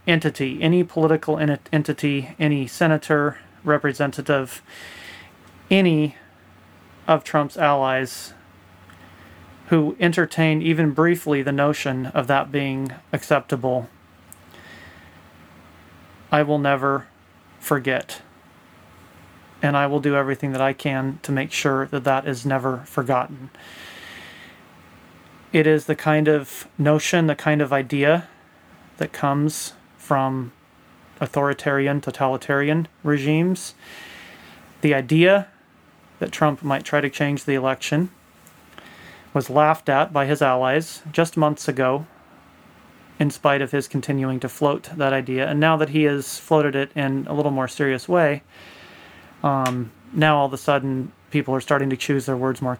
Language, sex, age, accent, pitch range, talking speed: English, male, 30-49, American, 130-150 Hz, 125 wpm